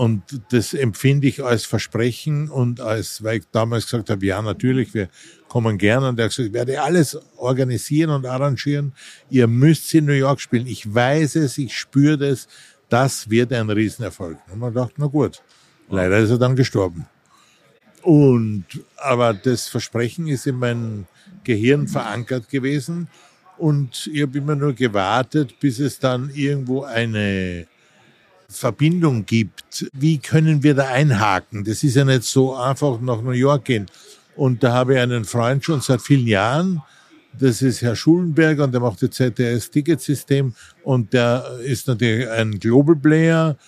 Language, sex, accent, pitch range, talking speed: German, male, German, 115-145 Hz, 165 wpm